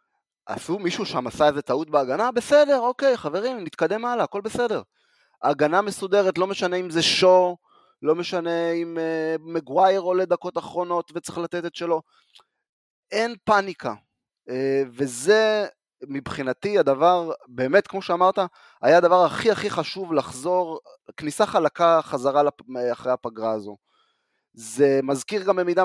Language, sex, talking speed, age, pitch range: Hebrew, male, 135 wpm, 30-49, 140-200 Hz